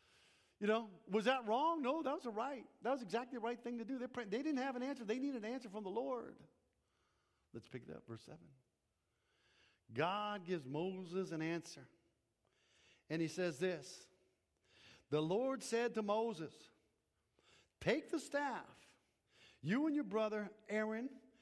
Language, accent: English, American